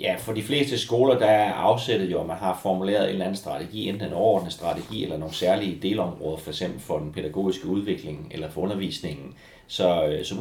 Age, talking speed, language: 30-49, 215 wpm, Danish